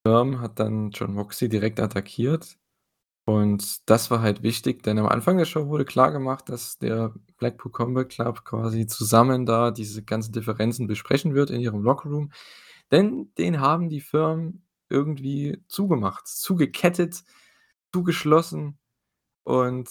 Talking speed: 135 wpm